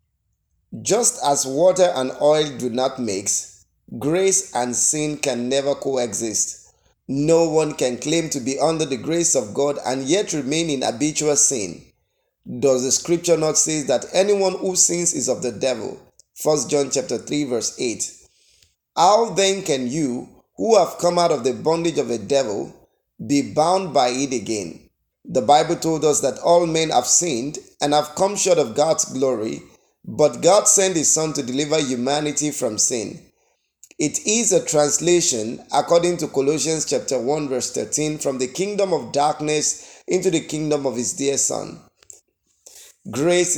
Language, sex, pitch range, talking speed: English, male, 135-170 Hz, 165 wpm